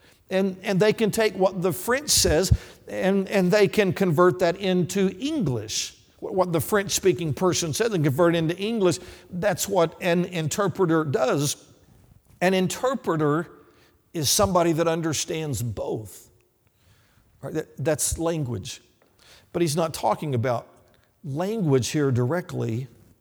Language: English